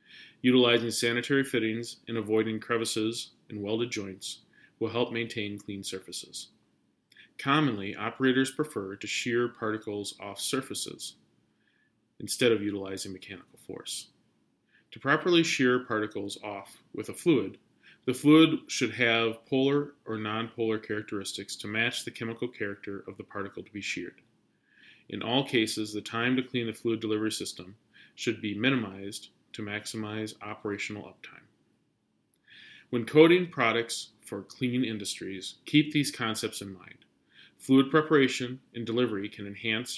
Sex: male